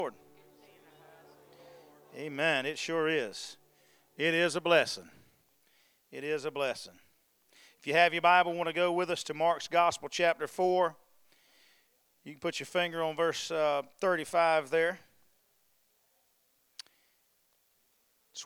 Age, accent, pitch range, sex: 40-59, American, 155-185 Hz, male